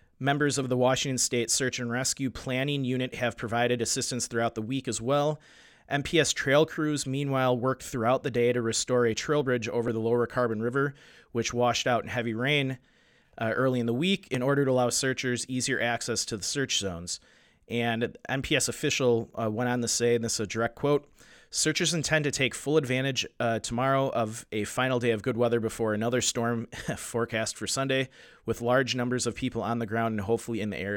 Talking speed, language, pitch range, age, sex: 205 wpm, English, 115-130 Hz, 30-49, male